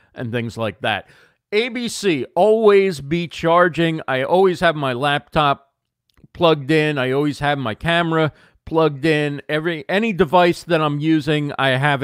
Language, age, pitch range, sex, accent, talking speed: English, 40-59, 130-175 Hz, male, American, 150 wpm